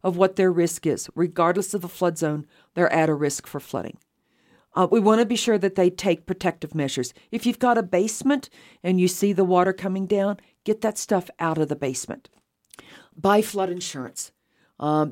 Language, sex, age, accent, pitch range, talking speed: English, female, 50-69, American, 155-195 Hz, 200 wpm